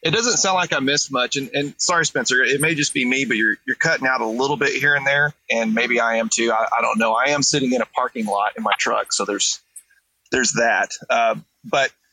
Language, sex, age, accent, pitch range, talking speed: English, male, 30-49, American, 125-160 Hz, 255 wpm